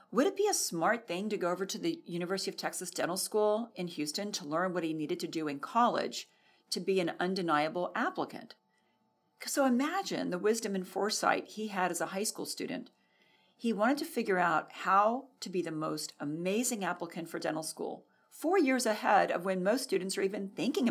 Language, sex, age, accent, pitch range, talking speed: English, female, 40-59, American, 175-235 Hz, 200 wpm